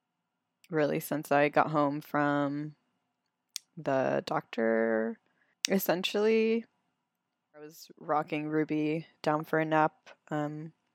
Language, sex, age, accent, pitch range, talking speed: English, female, 20-39, American, 150-175 Hz, 100 wpm